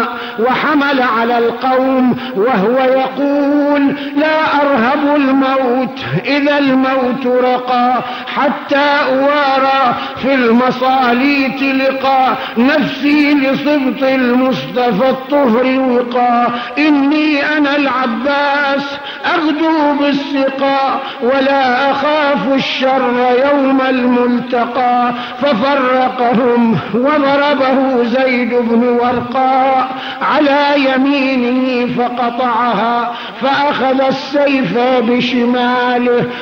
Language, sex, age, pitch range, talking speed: Arabic, male, 50-69, 245-280 Hz, 70 wpm